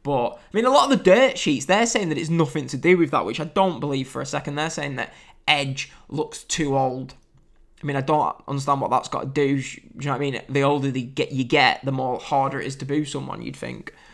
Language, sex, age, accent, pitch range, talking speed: English, male, 10-29, British, 135-170 Hz, 265 wpm